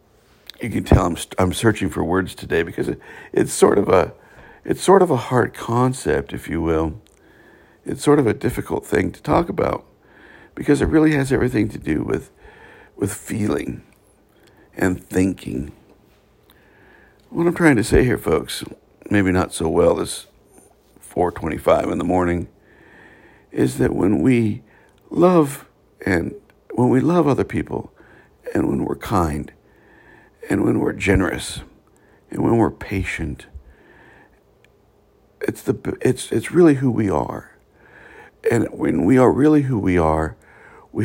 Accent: American